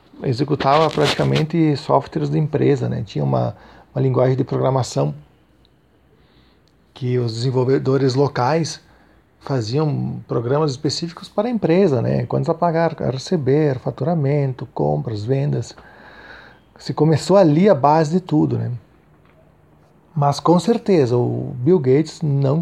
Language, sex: Portuguese, male